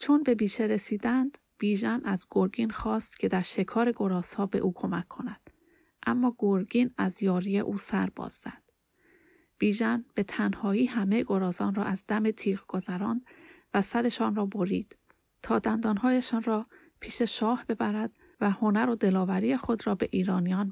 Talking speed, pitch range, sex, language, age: 150 wpm, 200-245 Hz, female, Persian, 30-49